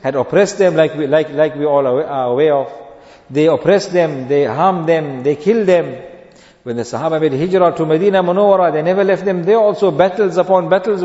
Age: 50-69